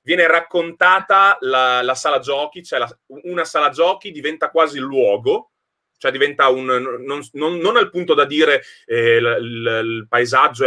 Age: 30-49